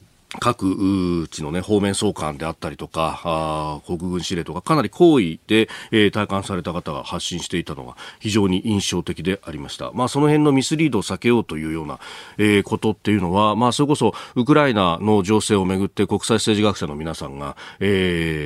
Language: Japanese